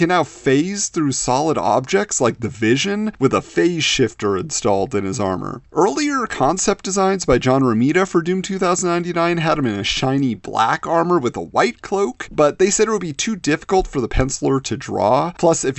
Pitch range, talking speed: 120-180 Hz, 200 wpm